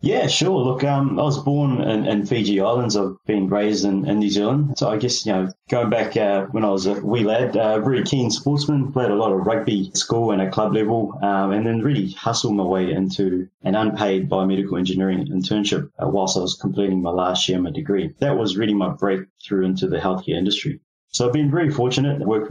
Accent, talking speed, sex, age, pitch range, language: Australian, 230 wpm, male, 20-39, 95-115 Hz, English